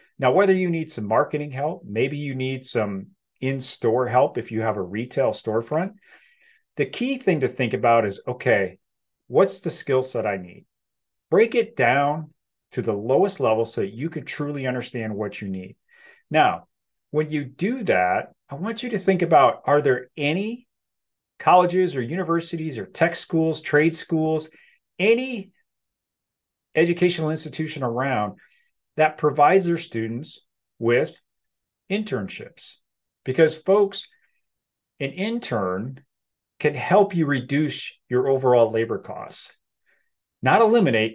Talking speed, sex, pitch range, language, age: 140 wpm, male, 125-190 Hz, English, 40-59